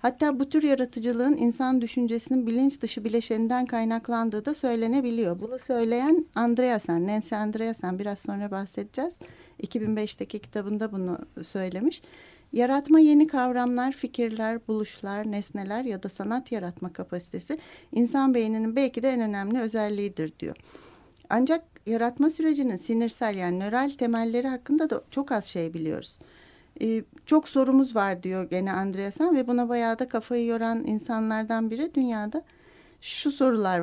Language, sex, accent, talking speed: Turkish, female, native, 130 wpm